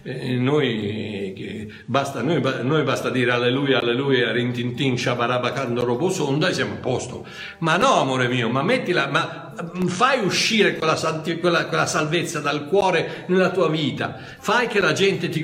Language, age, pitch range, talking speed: Italian, 60-79, 135-180 Hz, 150 wpm